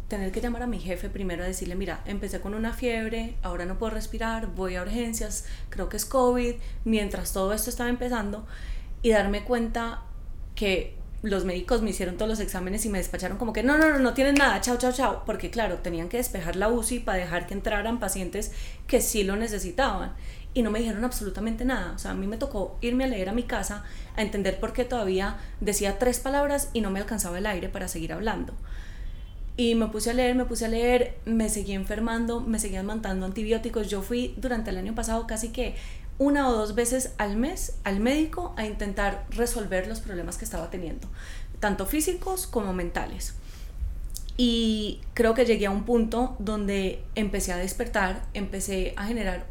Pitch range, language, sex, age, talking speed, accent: 195-235 Hz, Spanish, female, 20-39, 200 wpm, Colombian